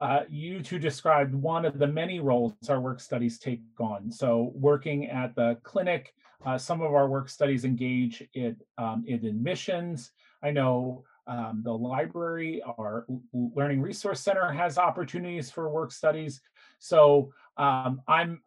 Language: English